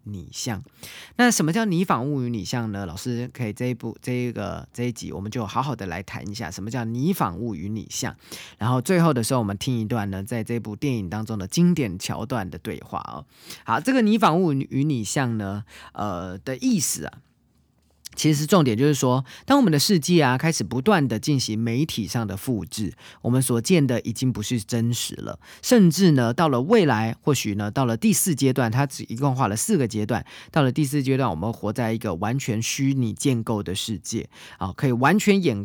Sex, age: male, 20-39